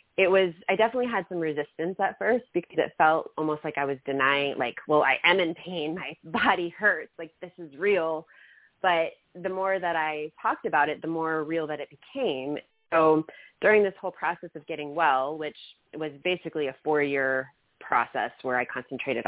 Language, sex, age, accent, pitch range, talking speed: English, female, 30-49, American, 135-165 Hz, 190 wpm